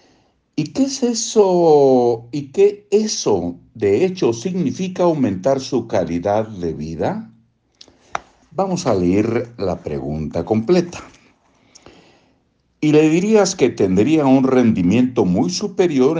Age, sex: 60-79, male